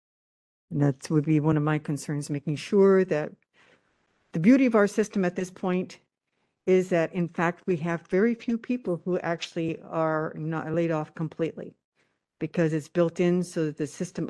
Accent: American